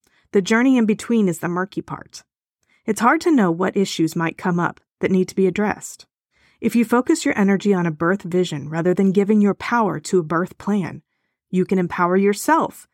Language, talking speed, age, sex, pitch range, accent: English, 205 wpm, 30-49, female, 180-230 Hz, American